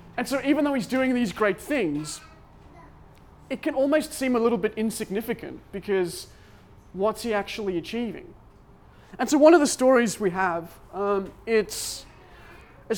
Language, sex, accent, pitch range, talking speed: English, male, Australian, 170-235 Hz, 155 wpm